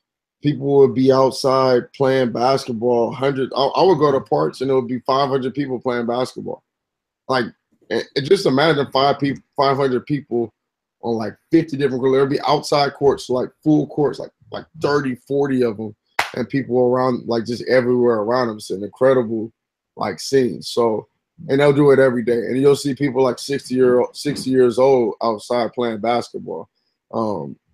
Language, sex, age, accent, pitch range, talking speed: English, male, 20-39, American, 120-145 Hz, 175 wpm